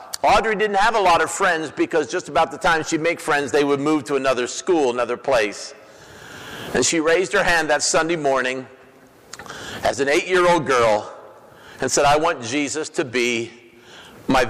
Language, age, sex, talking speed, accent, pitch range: English, 50-69, male, 180 wpm, American, 130-190 Hz